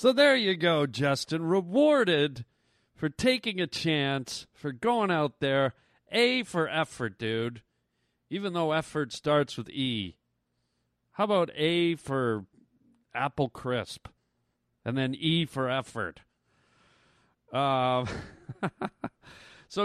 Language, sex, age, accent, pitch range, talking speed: English, male, 40-59, American, 130-185 Hz, 110 wpm